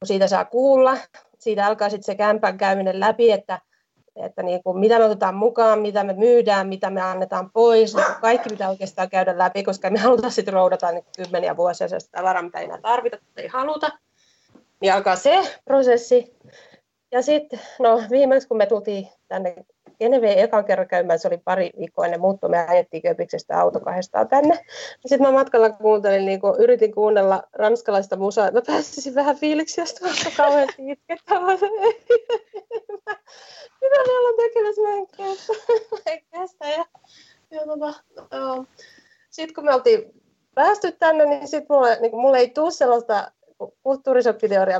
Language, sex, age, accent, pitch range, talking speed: Finnish, female, 30-49, native, 195-305 Hz, 150 wpm